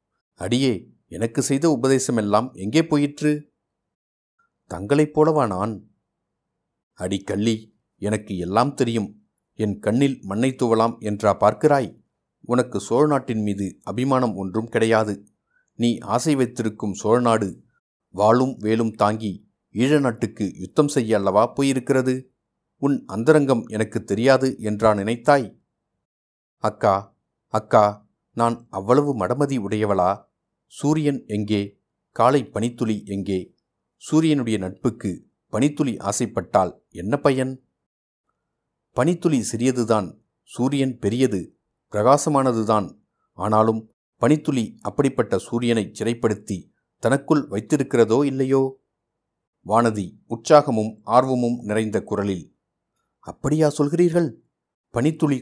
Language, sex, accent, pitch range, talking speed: Tamil, male, native, 105-135 Hz, 90 wpm